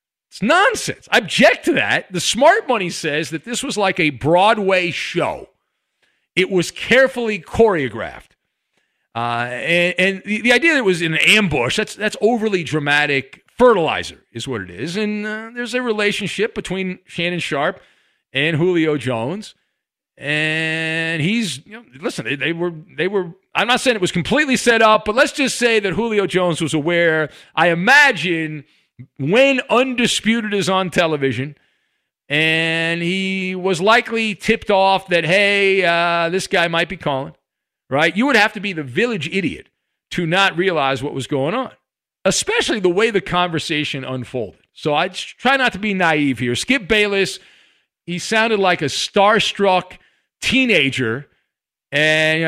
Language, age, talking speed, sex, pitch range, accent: English, 40-59, 160 wpm, male, 160-215 Hz, American